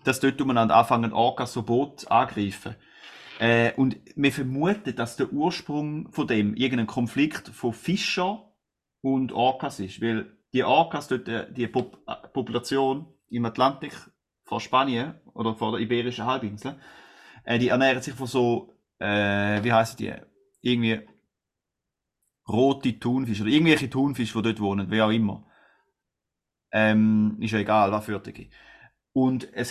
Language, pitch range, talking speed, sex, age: German, 115-140 Hz, 145 wpm, male, 30-49